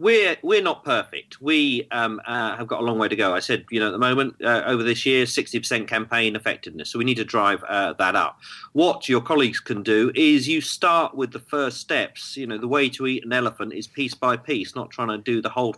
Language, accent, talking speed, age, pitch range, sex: English, British, 250 wpm, 40-59, 115-150 Hz, male